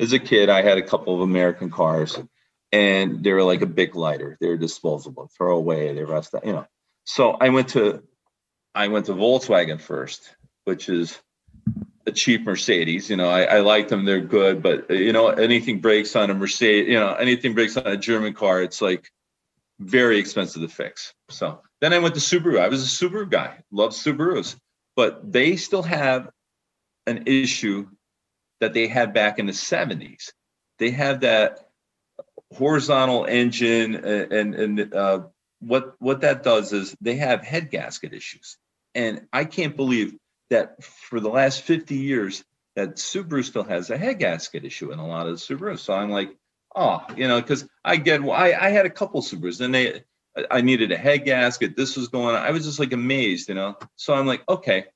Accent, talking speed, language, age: American, 195 wpm, English, 40-59